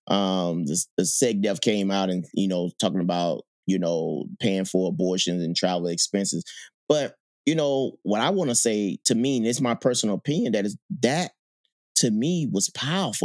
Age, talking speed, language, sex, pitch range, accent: 30-49, 195 wpm, English, male, 100-145 Hz, American